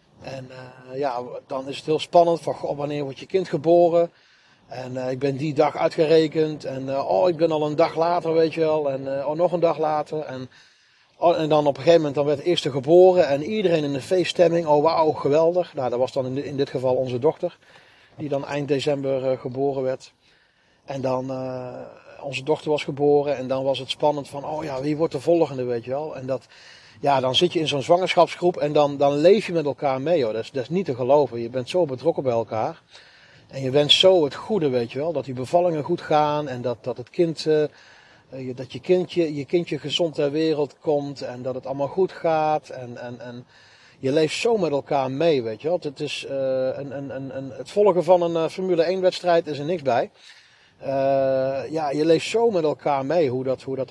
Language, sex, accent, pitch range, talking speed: Dutch, male, Dutch, 130-165 Hz, 235 wpm